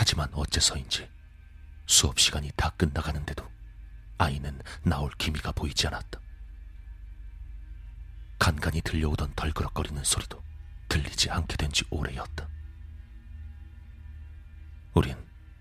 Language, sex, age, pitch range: Korean, male, 40-59, 75-85 Hz